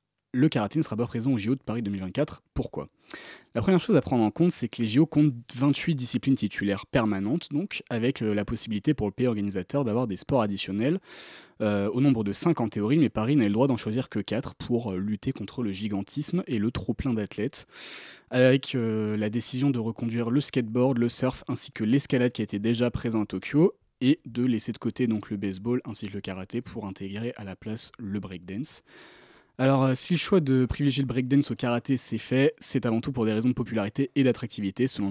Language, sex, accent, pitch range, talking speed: French, male, French, 110-135 Hz, 215 wpm